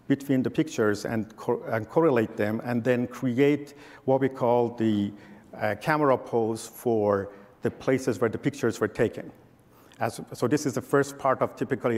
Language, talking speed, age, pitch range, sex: English, 175 wpm, 50-69, 110-135 Hz, male